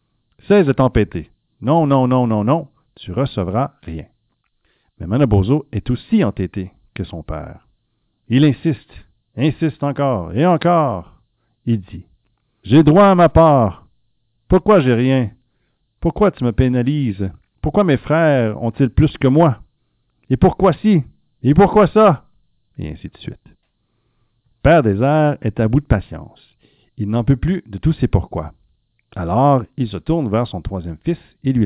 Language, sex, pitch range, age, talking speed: French, male, 105-150 Hz, 50-69, 165 wpm